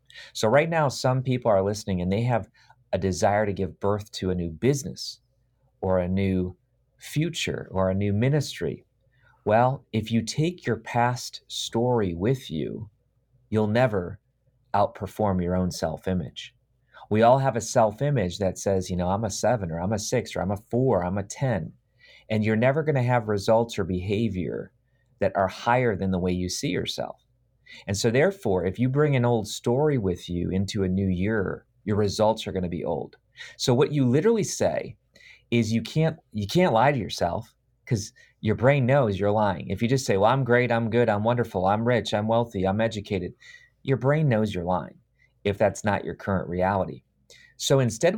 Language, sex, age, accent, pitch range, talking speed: English, male, 30-49, American, 100-130 Hz, 190 wpm